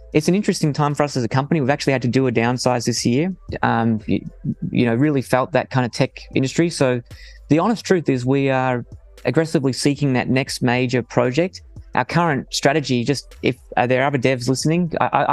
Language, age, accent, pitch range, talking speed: English, 20-39, Australian, 120-145 Hz, 210 wpm